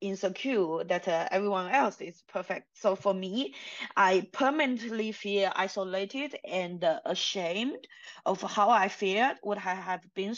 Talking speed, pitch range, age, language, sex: 140 wpm, 185-230 Hz, 20-39, English, female